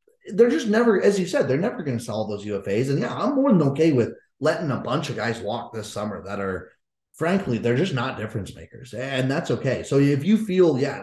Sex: male